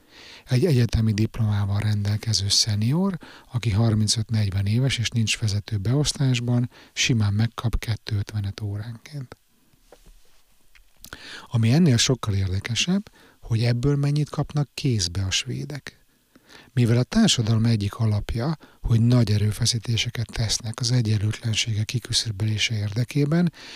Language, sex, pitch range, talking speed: Hungarian, male, 105-130 Hz, 100 wpm